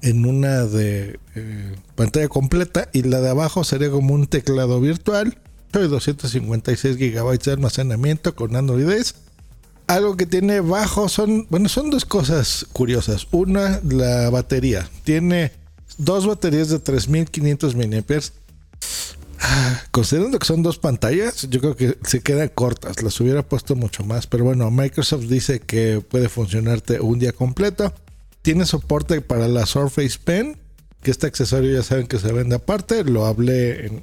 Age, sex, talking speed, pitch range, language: 50-69, male, 150 wpm, 120-160 Hz, Spanish